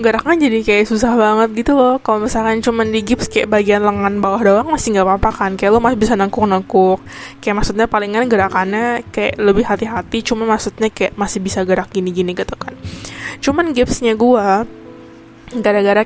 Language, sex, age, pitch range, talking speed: Indonesian, female, 10-29, 195-230 Hz, 175 wpm